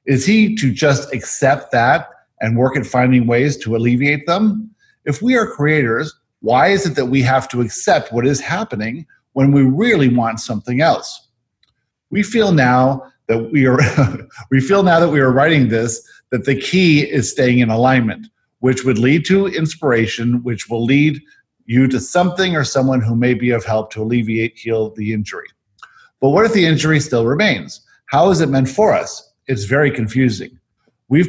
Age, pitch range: 50-69, 120-145 Hz